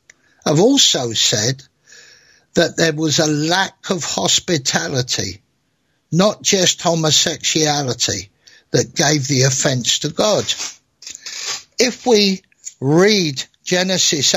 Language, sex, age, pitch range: English, male, 60-79, 135-180 Hz